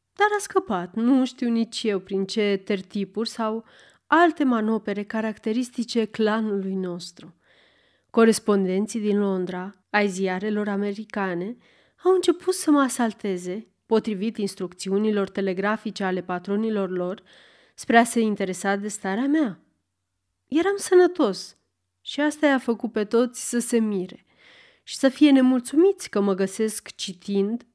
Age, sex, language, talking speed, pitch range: 30-49, female, Romanian, 130 wpm, 195-270 Hz